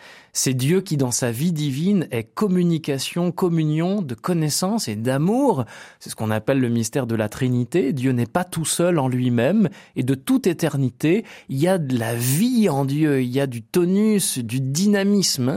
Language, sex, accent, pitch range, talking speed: French, male, French, 130-180 Hz, 190 wpm